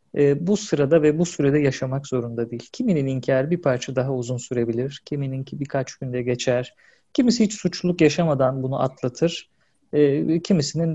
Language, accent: Turkish, native